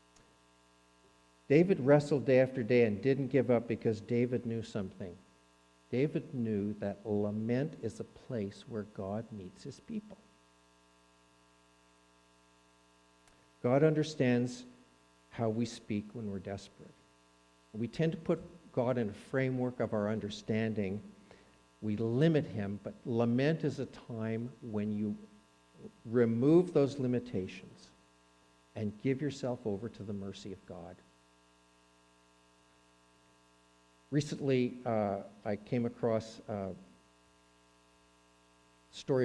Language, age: English, 50-69